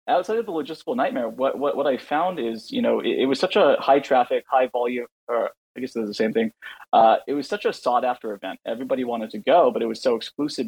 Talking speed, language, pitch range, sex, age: 265 wpm, English, 110-160 Hz, male, 20-39